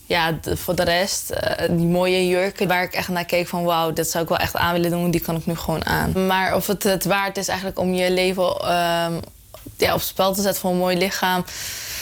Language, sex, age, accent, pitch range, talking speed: Dutch, female, 20-39, Dutch, 175-195 Hz, 255 wpm